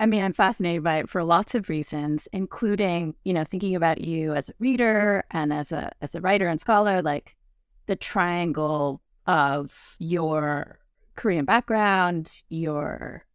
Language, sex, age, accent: English, female, 30-49, American